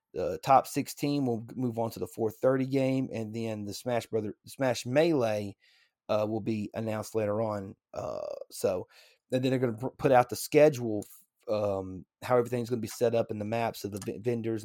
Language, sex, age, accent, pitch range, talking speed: English, male, 30-49, American, 105-130 Hz, 215 wpm